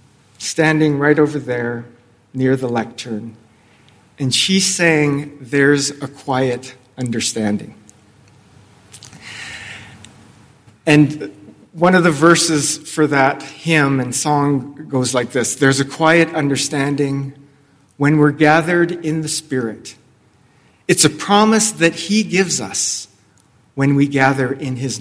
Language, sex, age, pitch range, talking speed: English, male, 40-59, 120-155 Hz, 120 wpm